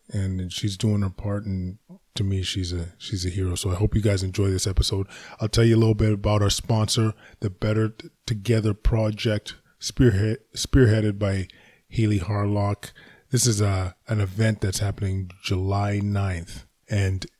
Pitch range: 95-110 Hz